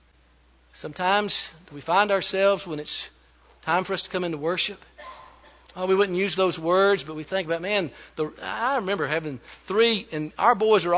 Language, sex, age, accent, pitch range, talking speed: English, male, 50-69, American, 150-230 Hz, 180 wpm